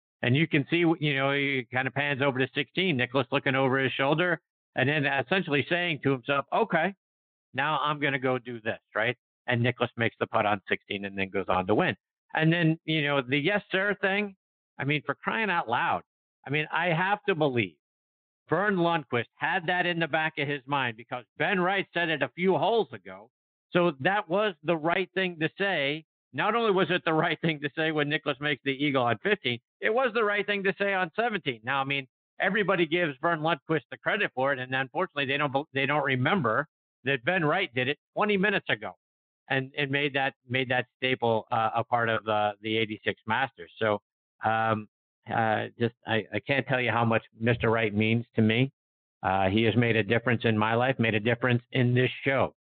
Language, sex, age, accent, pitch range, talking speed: English, male, 50-69, American, 115-160 Hz, 215 wpm